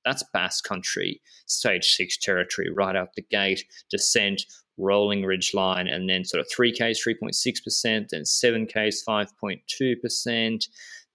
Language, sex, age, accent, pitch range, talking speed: English, male, 20-39, Australian, 95-115 Hz, 125 wpm